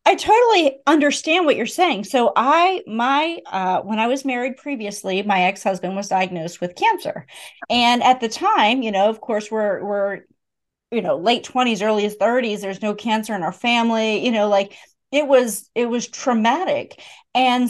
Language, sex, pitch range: English, female, 210-285 Hz